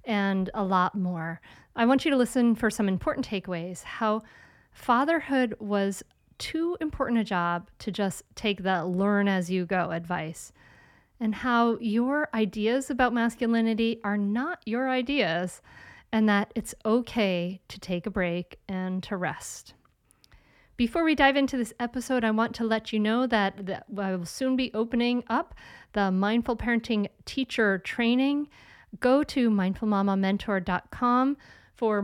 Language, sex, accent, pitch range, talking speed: English, female, American, 195-245 Hz, 145 wpm